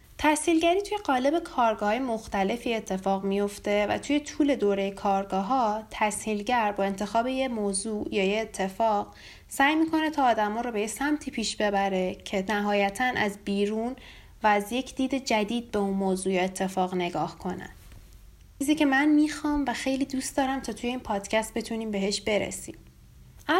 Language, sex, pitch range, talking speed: Persian, female, 205-265 Hz, 150 wpm